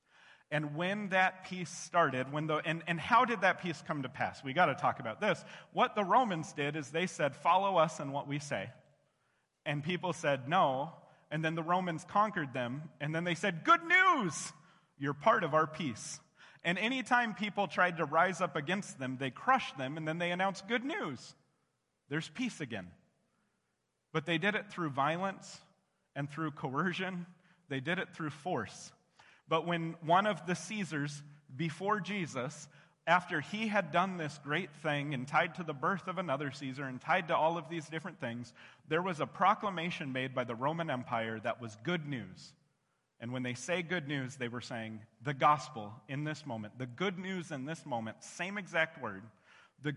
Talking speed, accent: 190 wpm, American